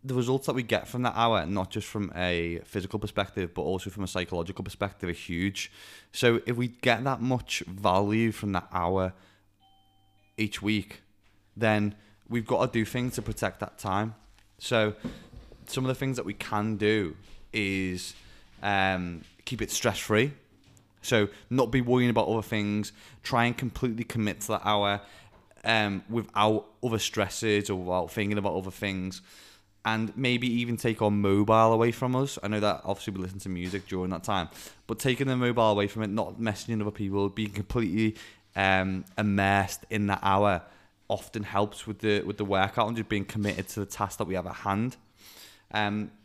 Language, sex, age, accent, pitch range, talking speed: English, male, 20-39, British, 95-110 Hz, 180 wpm